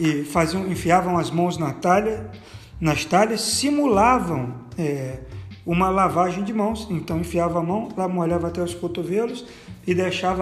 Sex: male